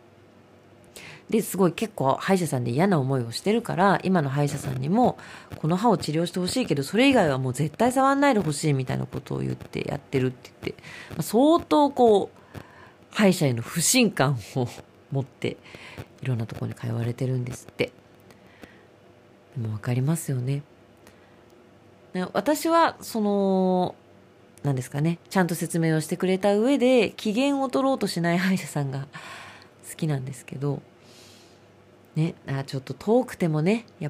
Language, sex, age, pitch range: Japanese, female, 40-59, 125-195 Hz